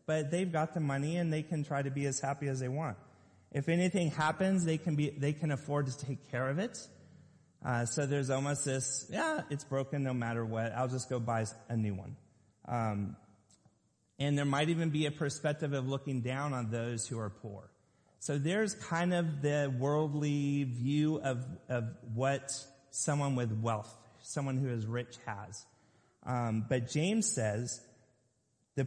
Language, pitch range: English, 115-145 Hz